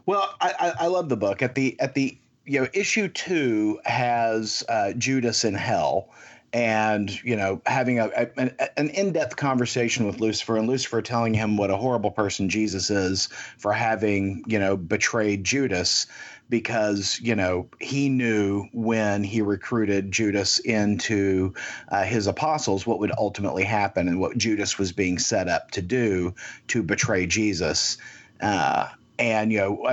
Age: 40-59